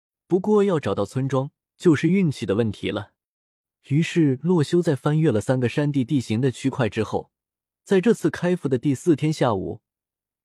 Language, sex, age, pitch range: Chinese, male, 20-39, 120-165 Hz